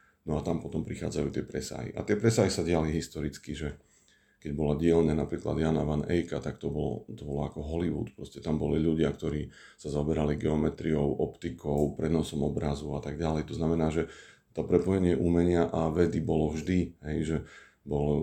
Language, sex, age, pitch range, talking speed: Slovak, male, 40-59, 75-85 Hz, 175 wpm